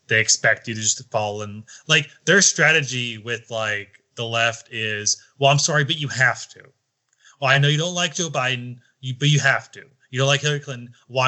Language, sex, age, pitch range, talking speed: English, male, 20-39, 110-145 Hz, 215 wpm